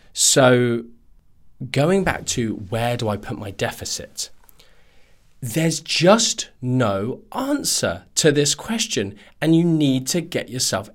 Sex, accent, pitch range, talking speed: male, British, 95-130 Hz, 125 wpm